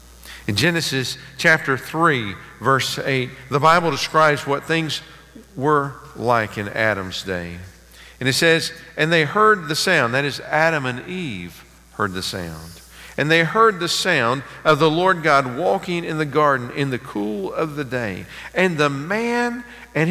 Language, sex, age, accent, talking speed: English, male, 50-69, American, 165 wpm